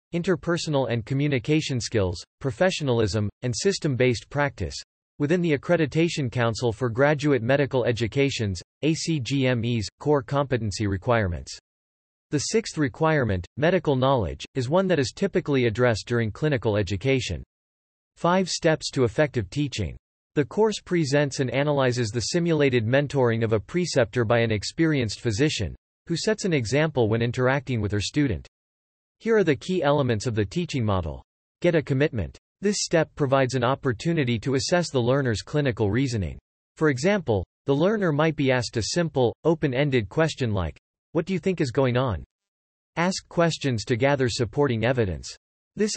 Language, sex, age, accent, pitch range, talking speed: English, male, 40-59, American, 115-155 Hz, 150 wpm